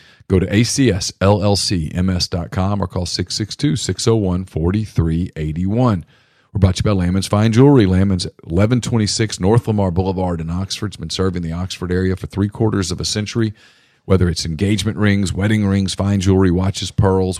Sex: male